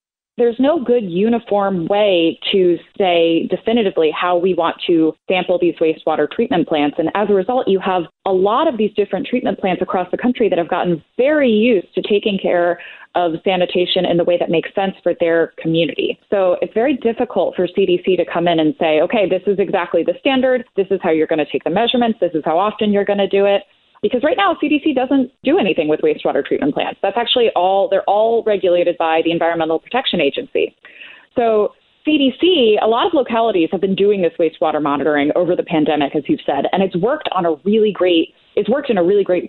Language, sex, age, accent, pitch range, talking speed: English, female, 20-39, American, 170-225 Hz, 215 wpm